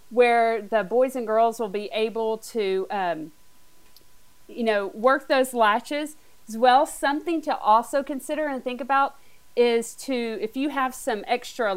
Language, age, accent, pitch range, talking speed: English, 40-59, American, 215-255 Hz, 160 wpm